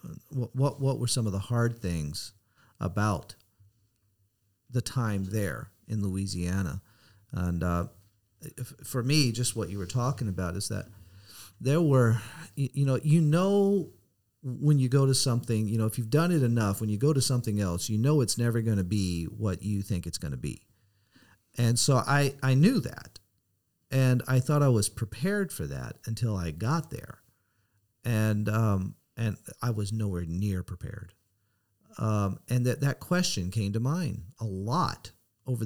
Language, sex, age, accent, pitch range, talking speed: English, male, 40-59, American, 100-125 Hz, 175 wpm